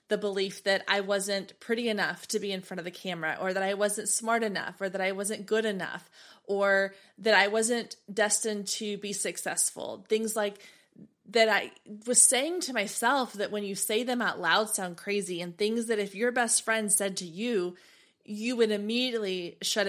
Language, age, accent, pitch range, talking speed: English, 20-39, American, 190-230 Hz, 195 wpm